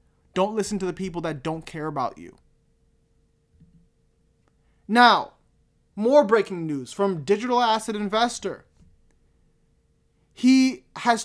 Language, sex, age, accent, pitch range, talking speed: English, male, 20-39, American, 195-280 Hz, 105 wpm